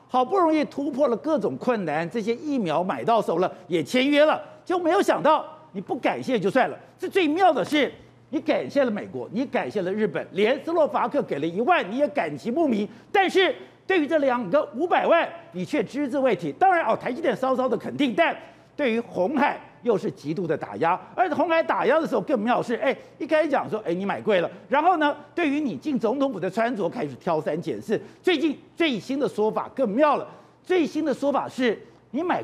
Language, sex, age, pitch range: Chinese, male, 50-69, 230-320 Hz